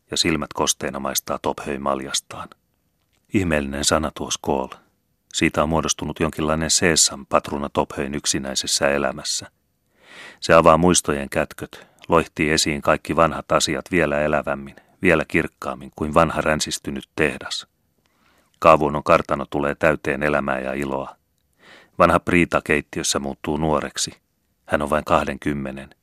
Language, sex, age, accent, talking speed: Finnish, male, 30-49, native, 120 wpm